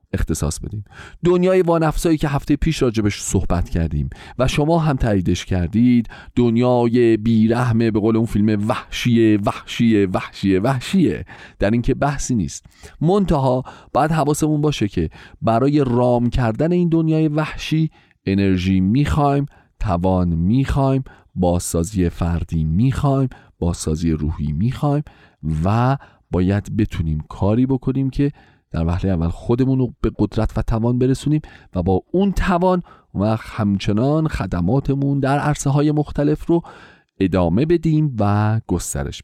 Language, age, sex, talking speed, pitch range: Persian, 40-59, male, 125 wpm, 95-145 Hz